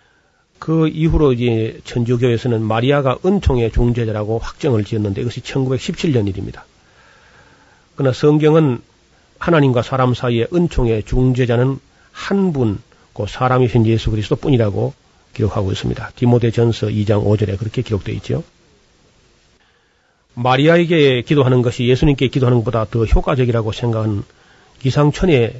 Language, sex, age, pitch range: Korean, male, 40-59, 115-140 Hz